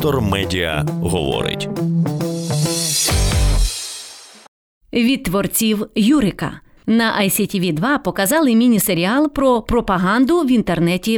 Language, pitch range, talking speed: English, 180-275 Hz, 75 wpm